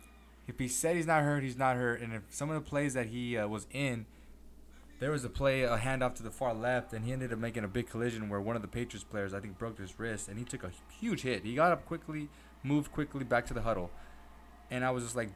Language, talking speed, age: English, 275 wpm, 20-39